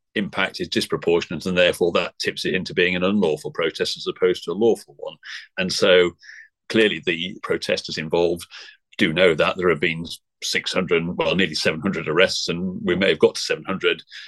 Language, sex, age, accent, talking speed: English, male, 40-59, British, 195 wpm